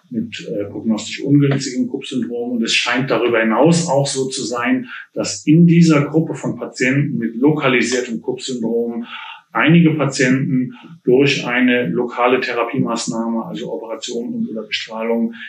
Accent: German